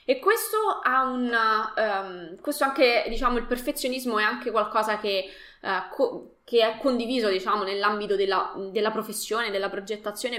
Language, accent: Italian, native